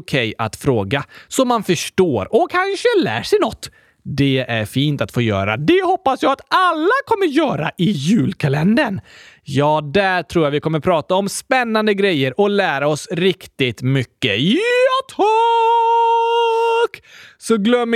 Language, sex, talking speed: Swedish, male, 150 wpm